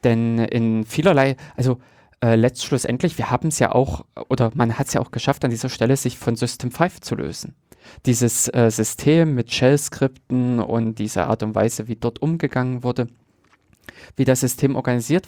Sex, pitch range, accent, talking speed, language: male, 115-145 Hz, German, 175 wpm, German